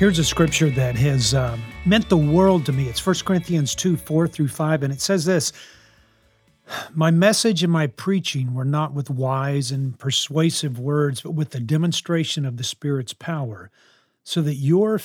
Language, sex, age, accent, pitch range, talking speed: English, male, 50-69, American, 130-160 Hz, 180 wpm